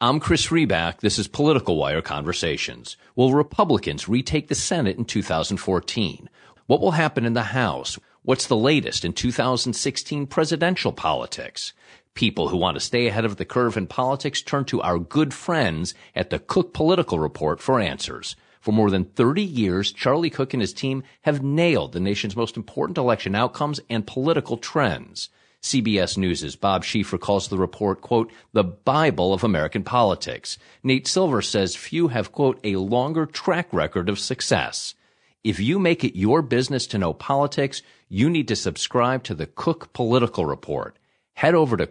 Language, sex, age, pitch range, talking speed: English, male, 40-59, 100-140 Hz, 170 wpm